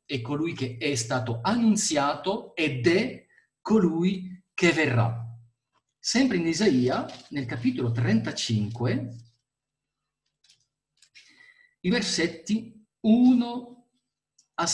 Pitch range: 125-185 Hz